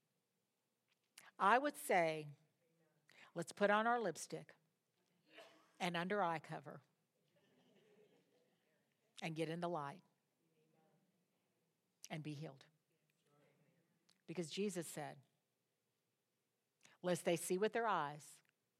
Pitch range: 160-190 Hz